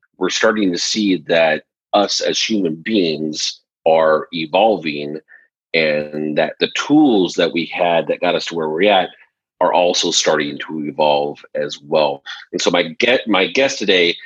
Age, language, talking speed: 40-59, English, 165 wpm